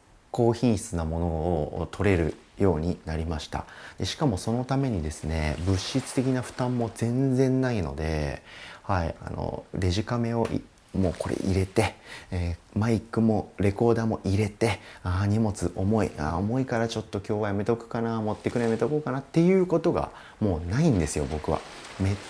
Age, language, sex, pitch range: 30-49, Japanese, male, 85-115 Hz